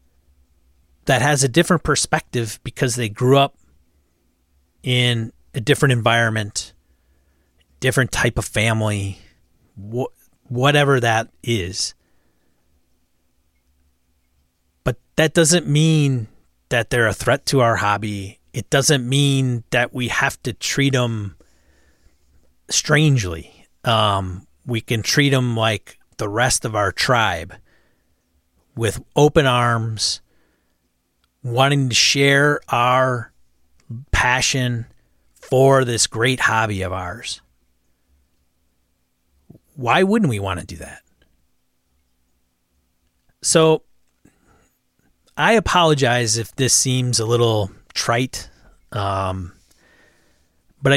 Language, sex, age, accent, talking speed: English, male, 40-59, American, 100 wpm